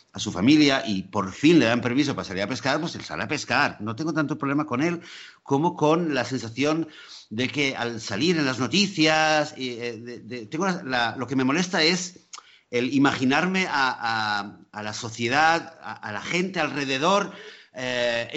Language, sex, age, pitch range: Spanish, male, 50-69, 105-155 Hz